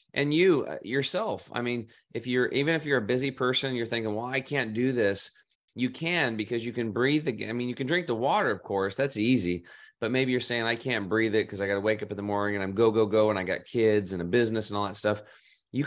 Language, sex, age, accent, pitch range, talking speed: English, male, 30-49, American, 100-125 Hz, 270 wpm